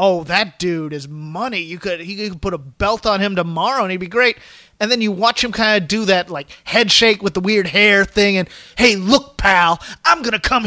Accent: American